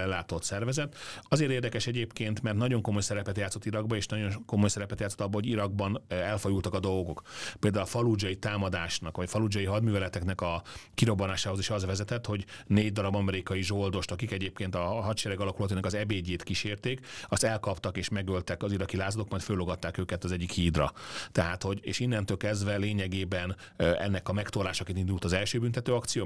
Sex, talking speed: male, 170 wpm